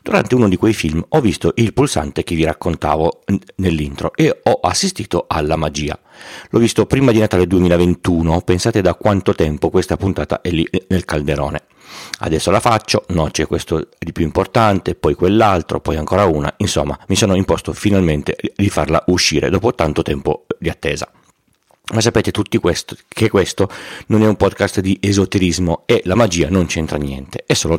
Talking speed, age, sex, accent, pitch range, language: 175 wpm, 40-59, male, native, 80-100 Hz, Italian